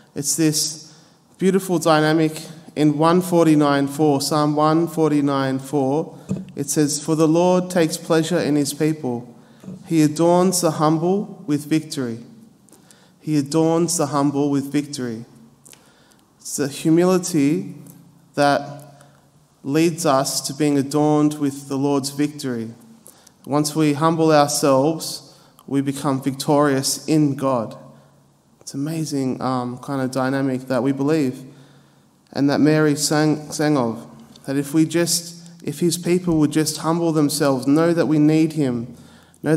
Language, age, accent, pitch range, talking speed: English, 20-39, Australian, 135-155 Hz, 125 wpm